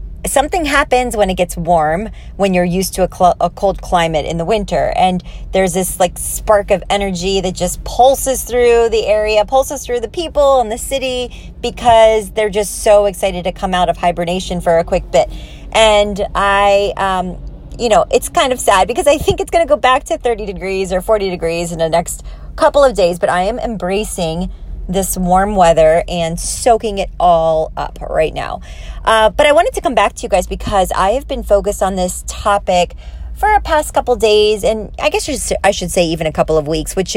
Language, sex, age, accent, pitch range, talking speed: English, female, 30-49, American, 180-230 Hz, 210 wpm